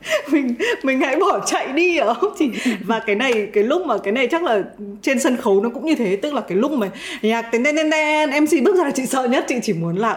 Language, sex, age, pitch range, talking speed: Vietnamese, female, 20-39, 200-265 Hz, 265 wpm